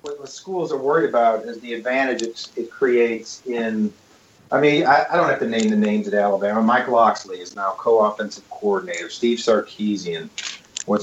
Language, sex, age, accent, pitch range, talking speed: English, male, 40-59, American, 105-135 Hz, 185 wpm